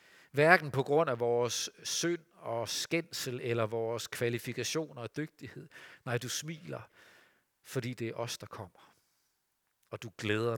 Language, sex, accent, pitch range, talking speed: Danish, male, native, 115-150 Hz, 140 wpm